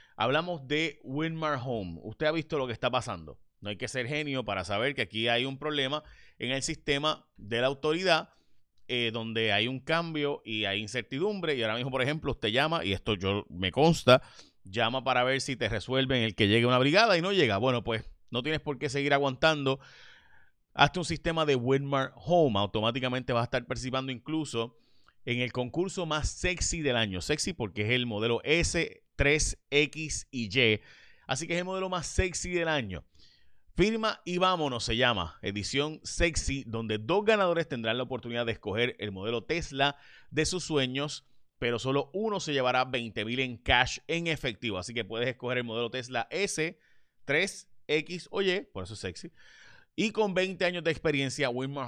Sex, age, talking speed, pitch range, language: male, 30-49, 185 wpm, 115-155 Hz, Spanish